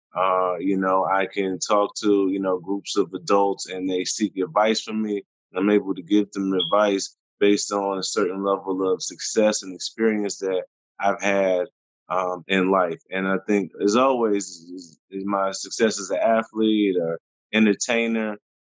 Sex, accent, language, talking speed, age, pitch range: male, American, English, 170 wpm, 20-39, 100-120 Hz